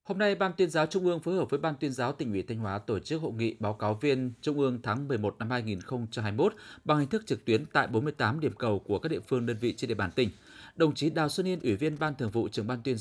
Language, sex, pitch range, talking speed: Vietnamese, male, 110-155 Hz, 285 wpm